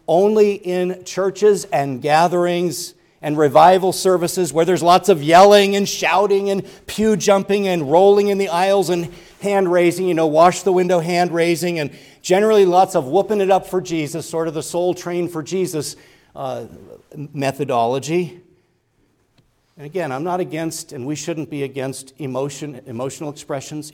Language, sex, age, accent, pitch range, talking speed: English, male, 50-69, American, 135-185 Hz, 160 wpm